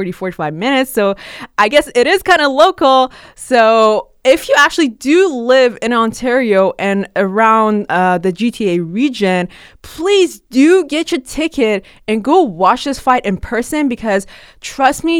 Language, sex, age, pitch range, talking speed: English, female, 20-39, 190-255 Hz, 155 wpm